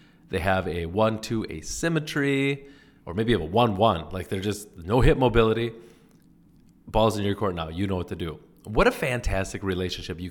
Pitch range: 95-140 Hz